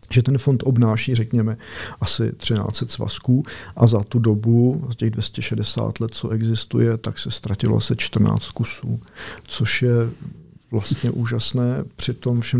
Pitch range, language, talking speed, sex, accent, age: 115-130 Hz, Czech, 150 wpm, male, native, 40-59